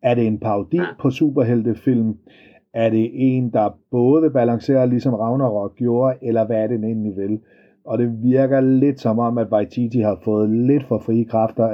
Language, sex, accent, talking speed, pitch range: Danish, male, native, 180 wpm, 110-130 Hz